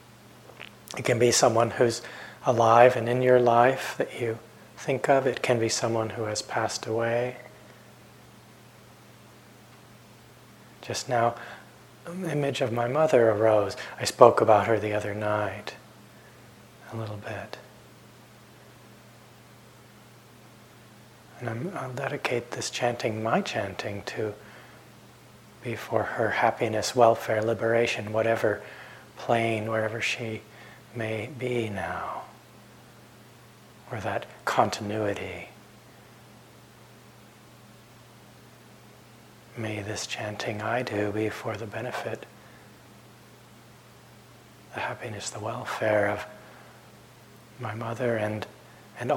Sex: male